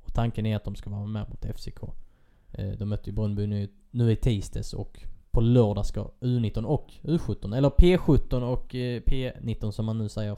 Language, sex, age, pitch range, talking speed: Swedish, male, 20-39, 105-120 Hz, 180 wpm